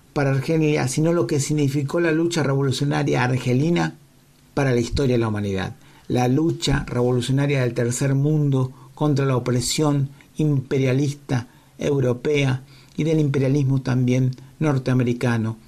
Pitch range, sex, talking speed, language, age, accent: 125-145 Hz, male, 125 wpm, Spanish, 50-69, Argentinian